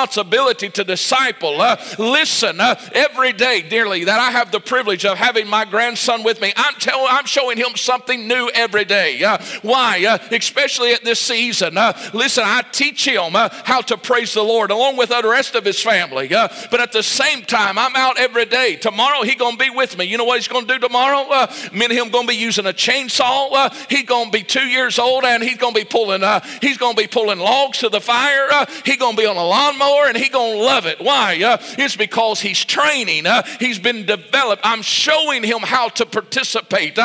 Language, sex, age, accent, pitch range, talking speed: English, male, 50-69, American, 225-265 Hz, 220 wpm